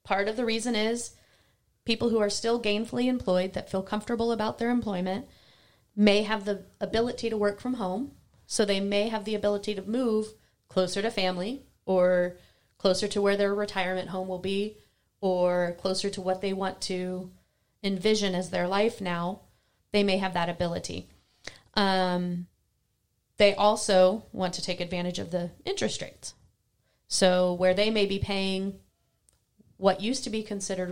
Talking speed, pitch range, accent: 165 wpm, 185-215 Hz, American